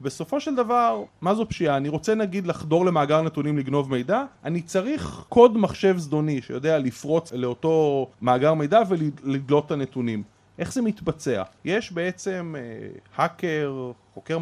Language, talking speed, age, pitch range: Hebrew, 145 wpm, 30-49, 135-200 Hz